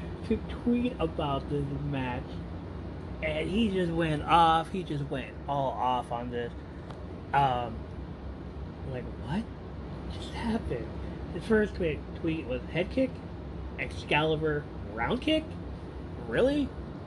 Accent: American